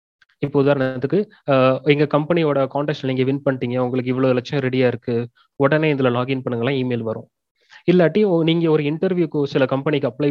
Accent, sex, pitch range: native, male, 125-155 Hz